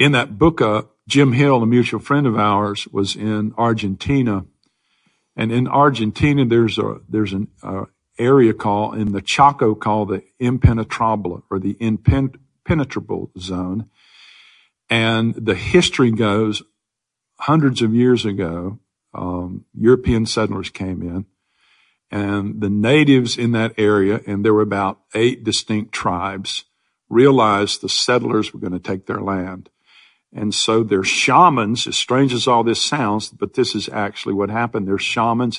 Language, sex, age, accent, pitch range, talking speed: English, male, 50-69, American, 100-120 Hz, 145 wpm